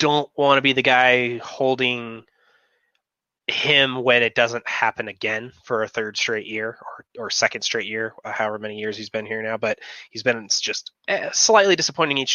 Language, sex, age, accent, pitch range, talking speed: English, male, 20-39, American, 110-145 Hz, 180 wpm